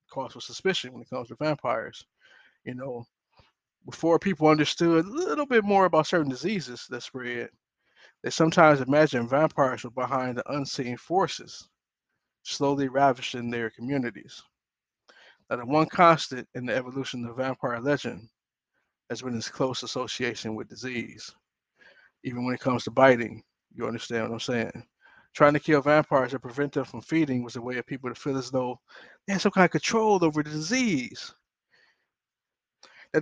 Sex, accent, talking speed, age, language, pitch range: male, American, 165 wpm, 20-39, English, 120-150 Hz